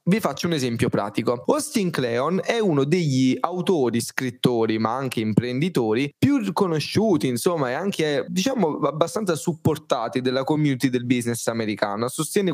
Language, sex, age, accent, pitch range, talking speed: Italian, male, 20-39, native, 125-190 Hz, 140 wpm